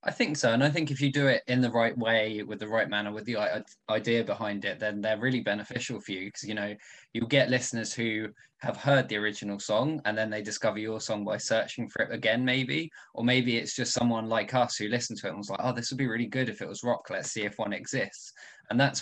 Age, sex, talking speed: 20-39, male, 265 wpm